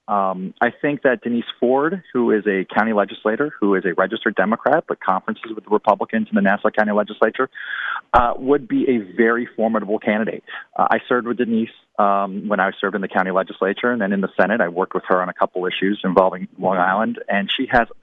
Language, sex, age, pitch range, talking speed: English, male, 40-59, 105-130 Hz, 215 wpm